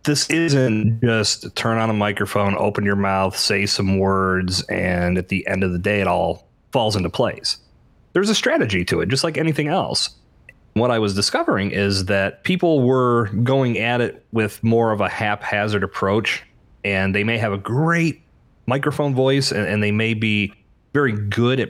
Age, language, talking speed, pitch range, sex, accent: 30-49, English, 185 wpm, 100-130 Hz, male, American